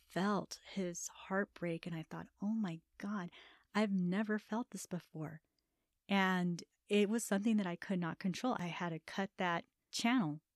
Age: 30-49